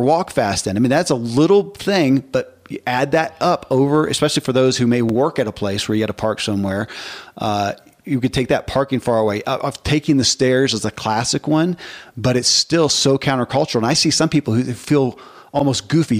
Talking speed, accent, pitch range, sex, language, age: 225 wpm, American, 115-140 Hz, male, English, 40-59